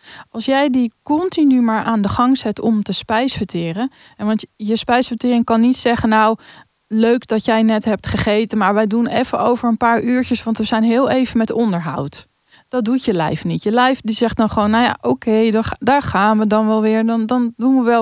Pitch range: 205-240 Hz